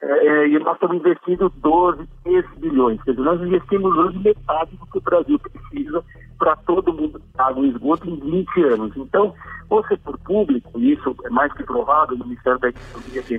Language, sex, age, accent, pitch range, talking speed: Portuguese, male, 60-79, Brazilian, 140-220 Hz, 185 wpm